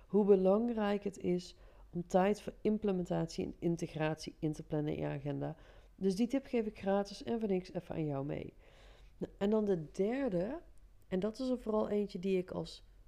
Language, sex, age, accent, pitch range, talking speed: Dutch, female, 40-59, Dutch, 170-230 Hz, 195 wpm